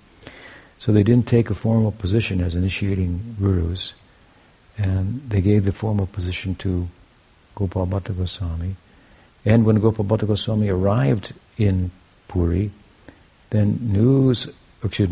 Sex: male